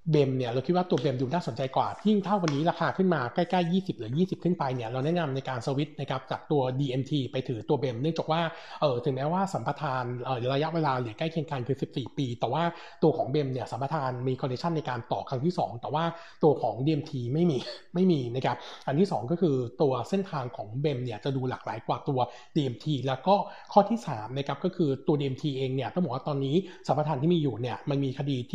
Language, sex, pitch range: Thai, male, 130-170 Hz